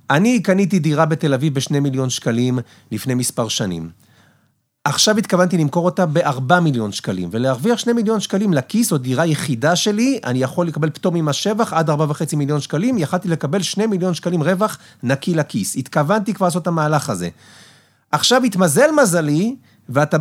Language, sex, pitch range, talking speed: Hebrew, male, 130-185 Hz, 165 wpm